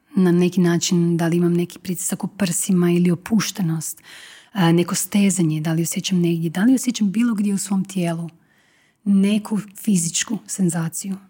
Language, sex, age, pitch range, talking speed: Croatian, female, 30-49, 180-200 Hz, 155 wpm